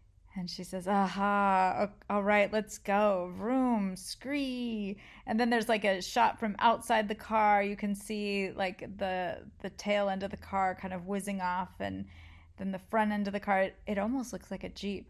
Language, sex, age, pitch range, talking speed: English, female, 30-49, 185-205 Hz, 195 wpm